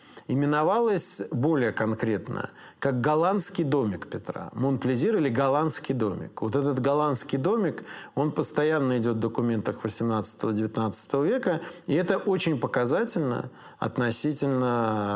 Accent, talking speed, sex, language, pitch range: native, 105 wpm, male, Russian, 115-155 Hz